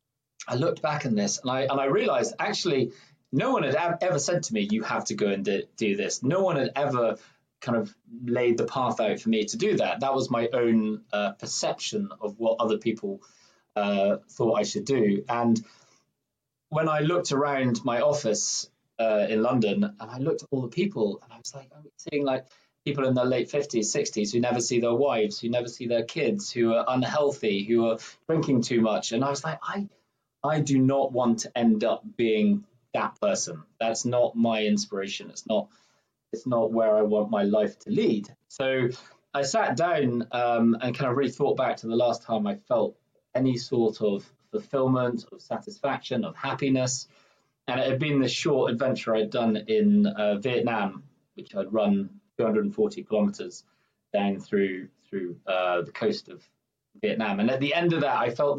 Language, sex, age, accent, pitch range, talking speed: English, male, 20-39, British, 110-140 Hz, 195 wpm